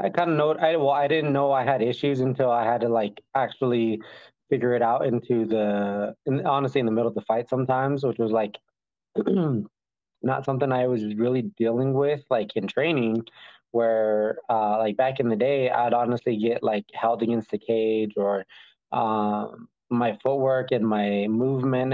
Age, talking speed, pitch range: 20-39, 180 wpm, 110-130 Hz